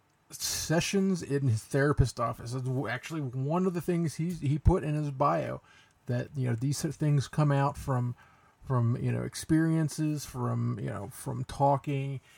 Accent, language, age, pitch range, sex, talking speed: American, English, 40-59, 125-150 Hz, male, 175 wpm